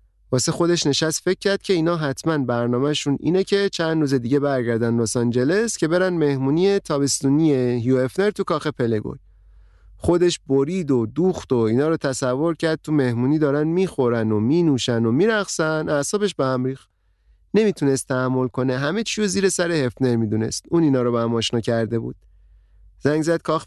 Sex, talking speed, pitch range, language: male, 160 wpm, 120-170 Hz, Persian